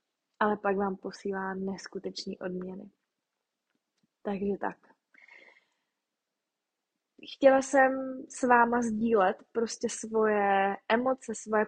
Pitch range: 205-235 Hz